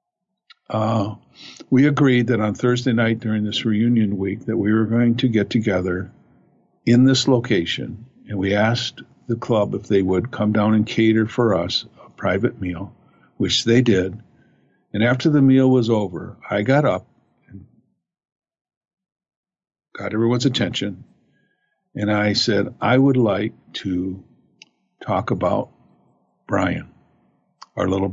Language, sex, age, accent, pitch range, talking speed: English, male, 50-69, American, 105-125 Hz, 140 wpm